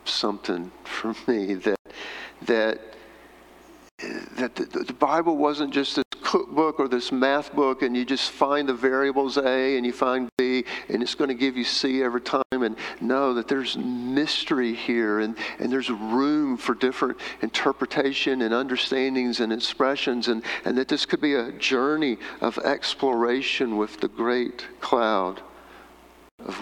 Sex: male